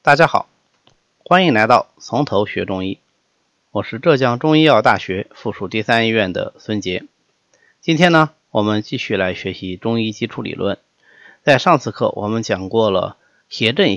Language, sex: Chinese, male